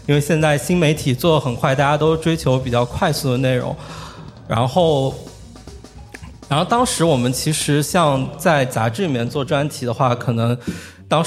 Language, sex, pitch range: Chinese, male, 125-150 Hz